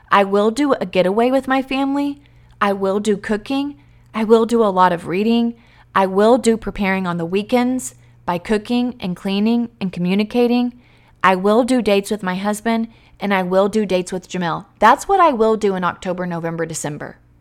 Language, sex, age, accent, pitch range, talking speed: English, female, 30-49, American, 180-230 Hz, 190 wpm